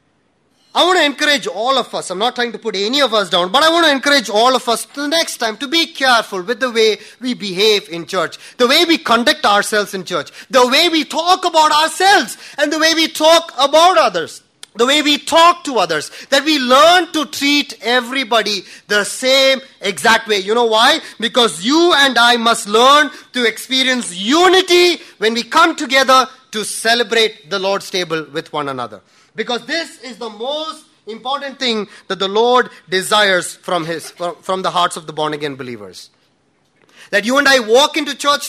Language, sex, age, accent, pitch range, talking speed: English, male, 30-49, Indian, 210-290 Hz, 195 wpm